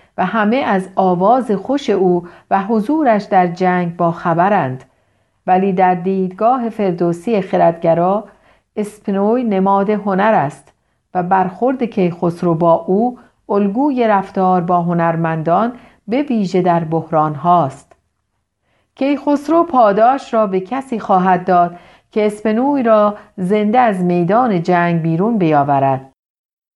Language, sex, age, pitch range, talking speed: Persian, female, 50-69, 170-215 Hz, 115 wpm